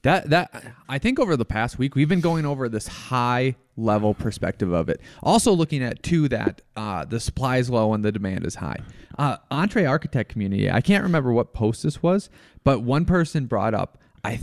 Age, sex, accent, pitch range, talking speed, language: 30-49, male, American, 105-145 Hz, 205 wpm, English